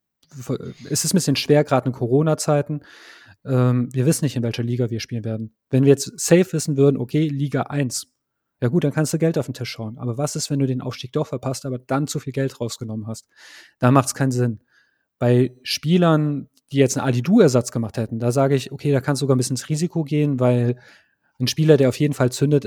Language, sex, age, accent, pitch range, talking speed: German, male, 30-49, German, 125-145 Hz, 230 wpm